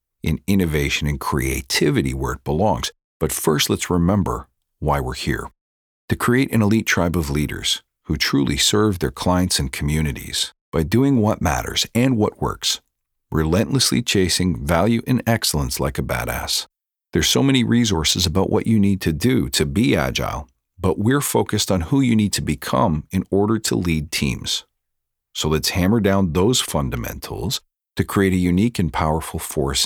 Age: 50-69